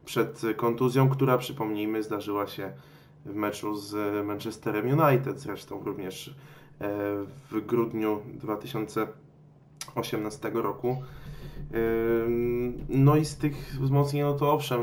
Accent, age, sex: native, 20-39, male